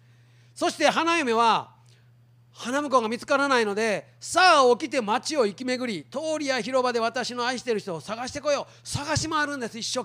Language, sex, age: Japanese, male, 40-59